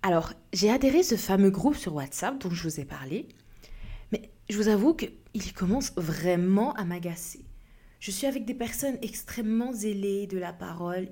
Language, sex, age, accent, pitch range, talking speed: French, female, 20-39, French, 175-225 Hz, 175 wpm